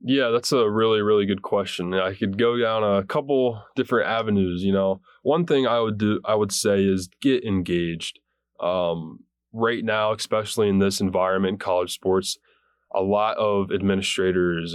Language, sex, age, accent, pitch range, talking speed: English, male, 20-39, American, 95-115 Hz, 165 wpm